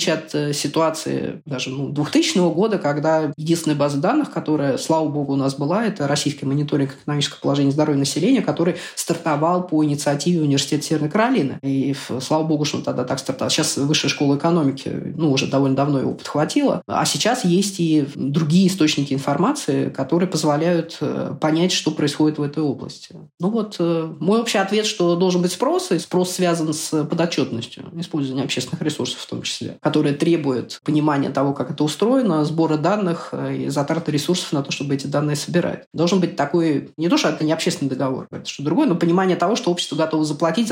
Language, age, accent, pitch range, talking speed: Russian, 20-39, native, 145-170 Hz, 180 wpm